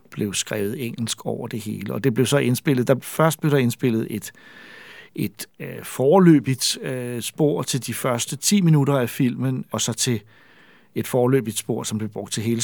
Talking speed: 190 wpm